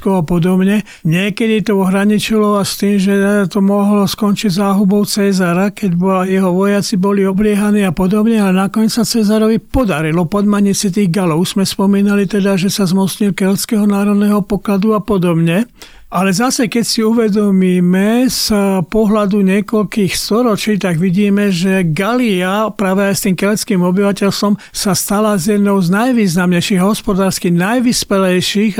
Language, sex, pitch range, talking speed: Slovak, male, 180-205 Hz, 140 wpm